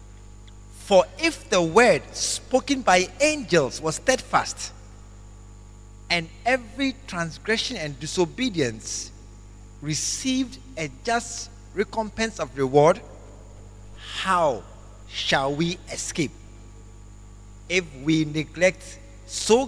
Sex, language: male, English